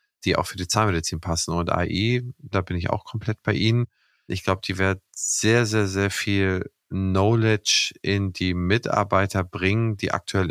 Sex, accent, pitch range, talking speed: male, German, 90-105 Hz, 170 wpm